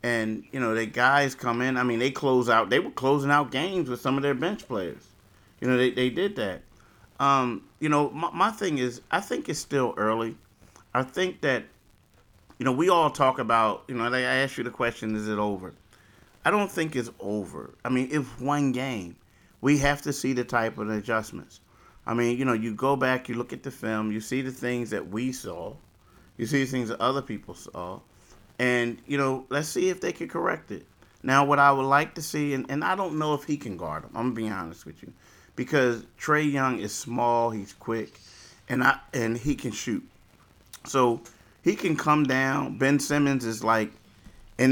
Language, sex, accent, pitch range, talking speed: English, male, American, 115-140 Hz, 215 wpm